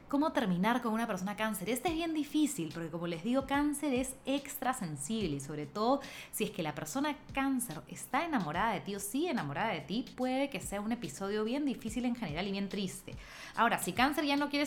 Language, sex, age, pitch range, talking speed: Spanish, female, 20-39, 170-255 Hz, 220 wpm